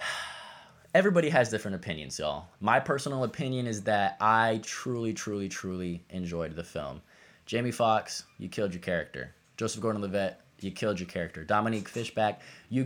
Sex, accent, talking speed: male, American, 155 wpm